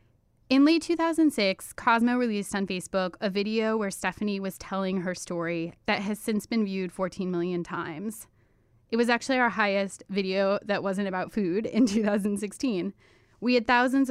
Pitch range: 180-225 Hz